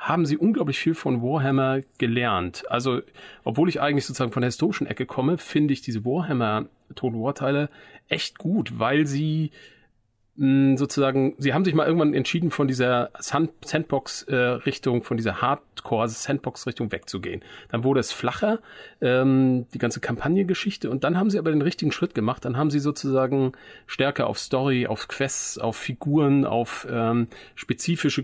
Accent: German